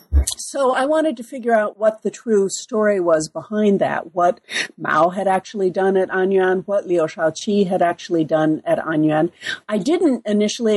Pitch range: 155-205 Hz